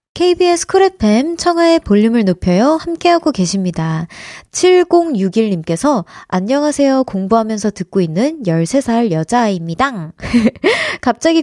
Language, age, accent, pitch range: Korean, 20-39, native, 195-300 Hz